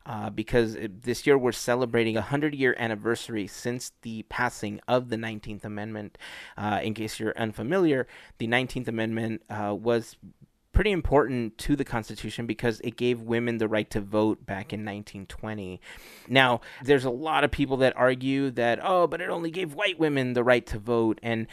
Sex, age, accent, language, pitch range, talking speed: male, 30-49, American, English, 110-140 Hz, 175 wpm